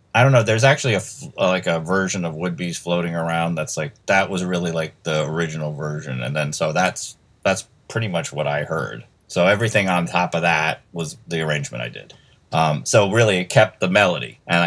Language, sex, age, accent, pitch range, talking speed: English, male, 30-49, American, 85-120 Hz, 210 wpm